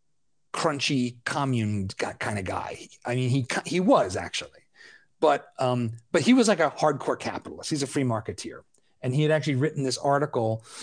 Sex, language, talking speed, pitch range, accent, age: male, English, 170 wpm, 115-140 Hz, American, 30-49